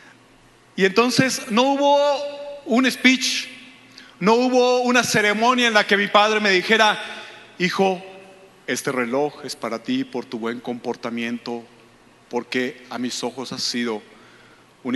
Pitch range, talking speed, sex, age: 190-250 Hz, 135 wpm, male, 40-59